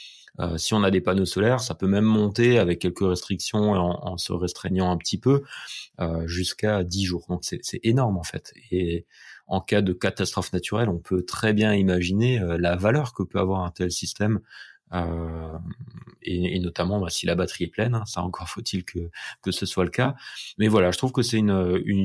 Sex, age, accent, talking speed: male, 30-49, French, 215 wpm